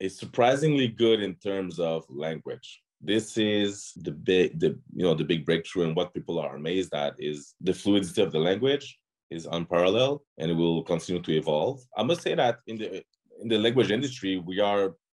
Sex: male